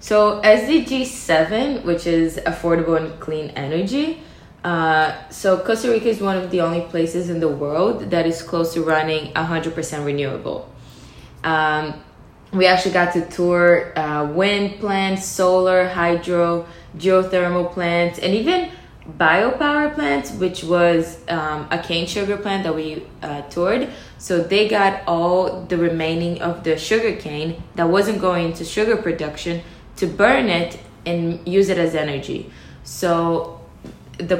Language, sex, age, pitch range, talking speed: English, female, 20-39, 160-190 Hz, 145 wpm